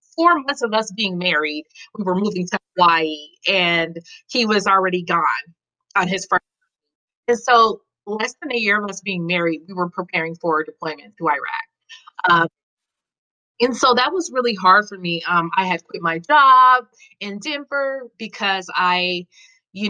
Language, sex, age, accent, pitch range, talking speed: English, female, 30-49, American, 175-240 Hz, 170 wpm